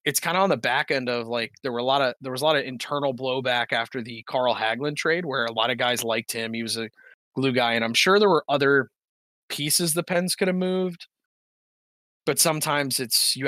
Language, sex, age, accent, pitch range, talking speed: English, male, 20-39, American, 115-140 Hz, 240 wpm